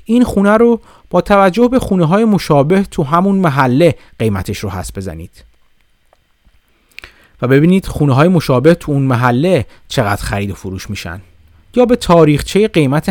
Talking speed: 140 wpm